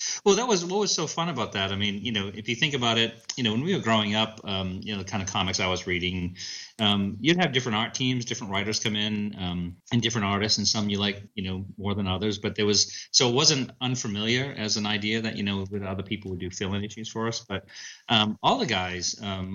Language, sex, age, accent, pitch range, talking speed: English, male, 30-49, American, 90-110 Hz, 265 wpm